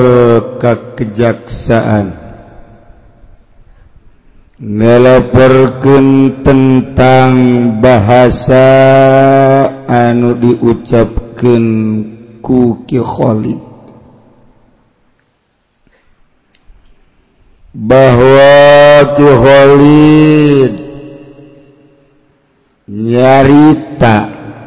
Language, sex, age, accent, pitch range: Indonesian, male, 50-69, native, 120-145 Hz